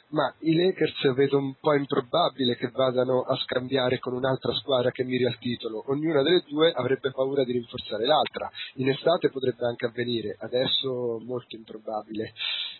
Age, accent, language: 30-49, native, Italian